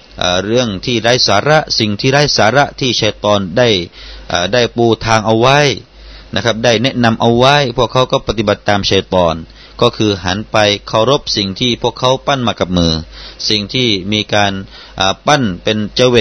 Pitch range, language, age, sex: 100-125 Hz, Thai, 30-49, male